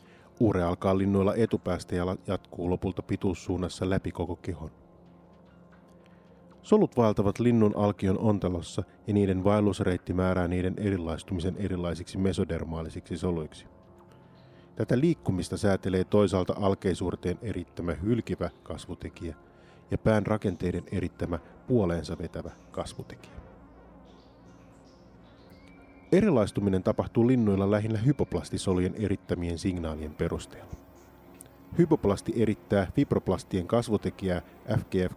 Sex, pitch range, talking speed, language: male, 90-105 Hz, 90 wpm, Finnish